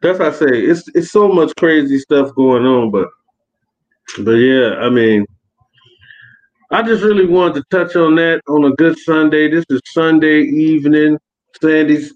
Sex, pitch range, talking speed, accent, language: male, 125-155 Hz, 170 wpm, American, English